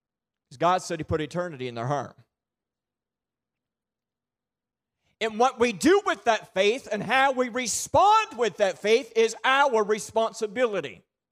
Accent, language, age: American, English, 40-59